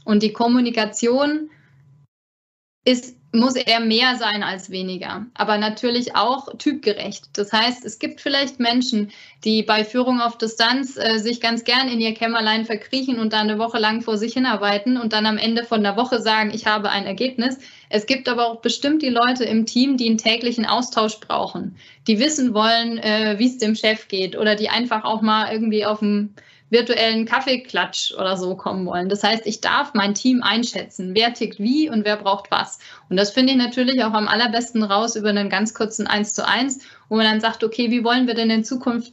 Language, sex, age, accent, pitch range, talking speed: German, female, 20-39, German, 210-240 Hz, 200 wpm